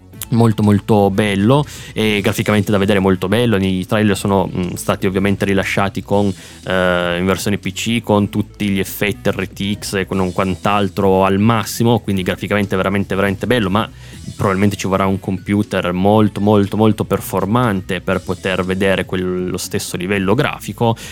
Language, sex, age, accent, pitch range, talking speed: Italian, male, 20-39, native, 95-105 Hz, 150 wpm